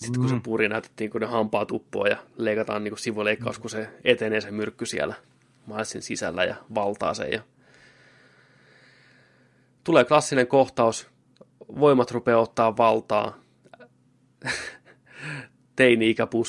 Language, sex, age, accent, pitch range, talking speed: Finnish, male, 20-39, native, 105-125 Hz, 115 wpm